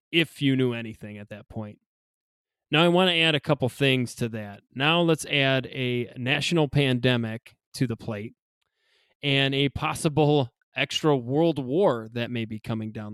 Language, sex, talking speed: English, male, 170 wpm